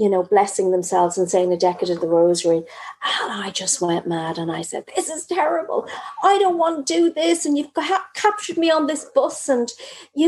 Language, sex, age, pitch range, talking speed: English, female, 40-59, 180-295 Hz, 220 wpm